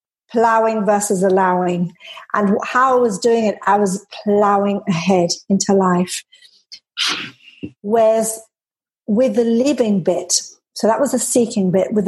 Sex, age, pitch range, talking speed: female, 50-69, 200-240 Hz, 135 wpm